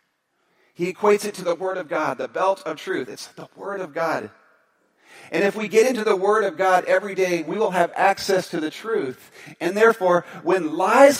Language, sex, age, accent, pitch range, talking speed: English, male, 40-59, American, 150-215 Hz, 210 wpm